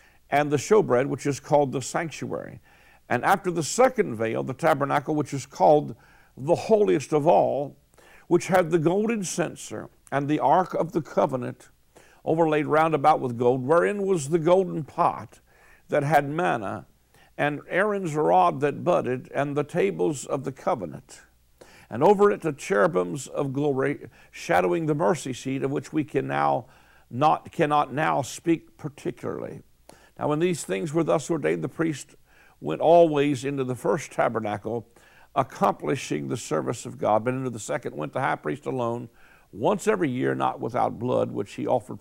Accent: American